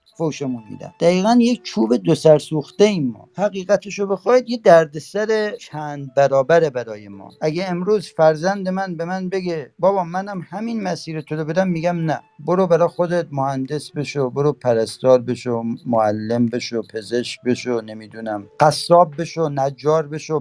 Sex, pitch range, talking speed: male, 140-195 Hz, 155 wpm